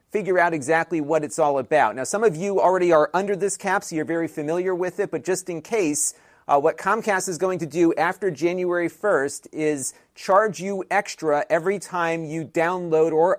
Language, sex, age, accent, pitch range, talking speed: English, male, 40-59, American, 155-185 Hz, 200 wpm